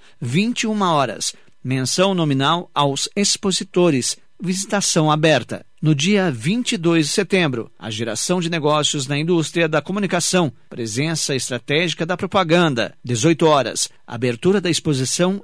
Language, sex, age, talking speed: Portuguese, male, 50-69, 115 wpm